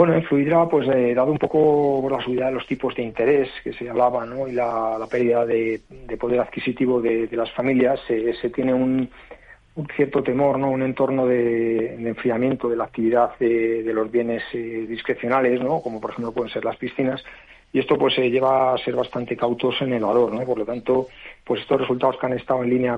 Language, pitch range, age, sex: Spanish, 110-125 Hz, 40-59, male